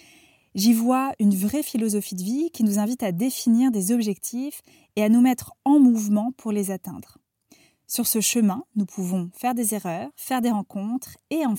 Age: 20-39